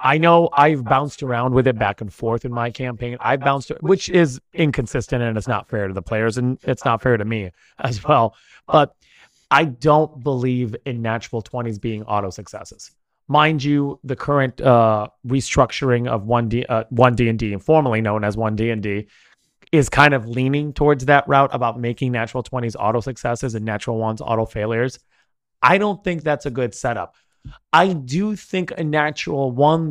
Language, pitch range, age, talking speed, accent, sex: English, 115-150 Hz, 30-49, 185 wpm, American, male